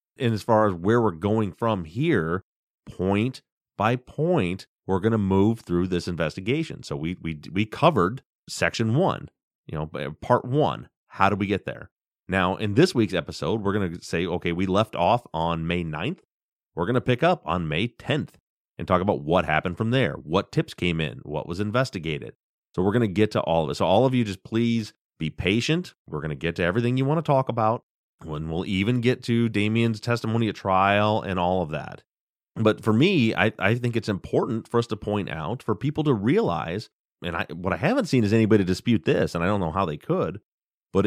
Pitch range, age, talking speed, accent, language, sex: 90-120 Hz, 30-49, 215 wpm, American, English, male